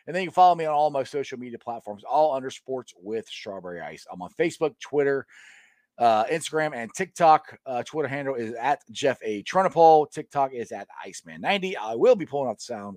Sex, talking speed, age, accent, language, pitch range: male, 205 wpm, 40-59, American, English, 120-175 Hz